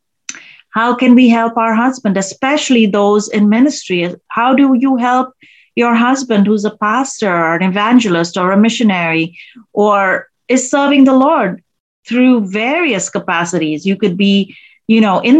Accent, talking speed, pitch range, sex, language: native, 150 wpm, 205-260 Hz, female, Telugu